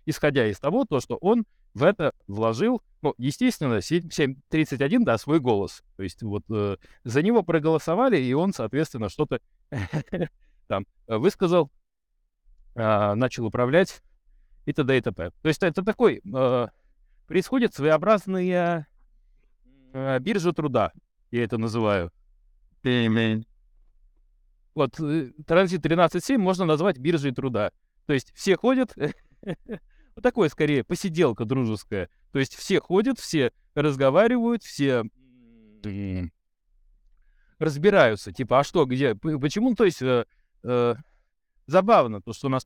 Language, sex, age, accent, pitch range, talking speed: Russian, male, 30-49, native, 115-175 Hz, 115 wpm